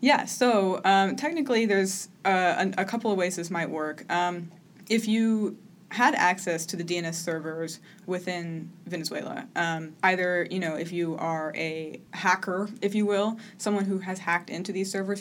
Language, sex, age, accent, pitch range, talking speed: English, female, 20-39, American, 165-195 Hz, 170 wpm